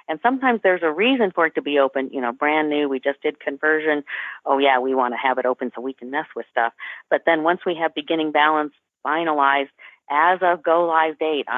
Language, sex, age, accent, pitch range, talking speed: English, female, 50-69, American, 140-190 Hz, 235 wpm